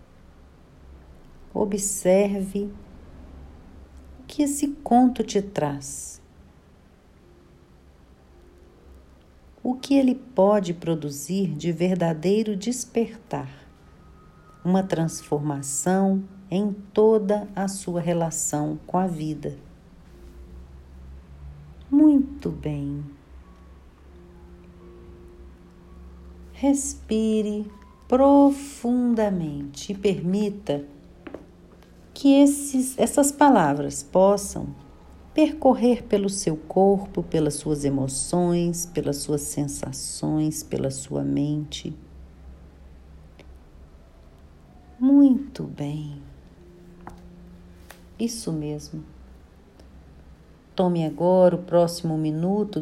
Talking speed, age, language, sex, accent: 65 wpm, 50-69, Portuguese, female, Brazilian